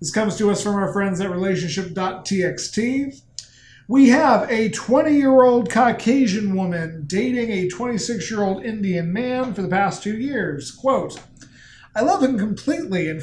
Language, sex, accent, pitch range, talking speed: English, male, American, 175-235 Hz, 140 wpm